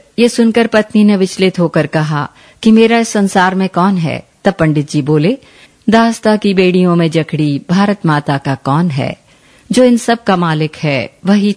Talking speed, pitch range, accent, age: 180 wpm, 150-205 Hz, native, 50-69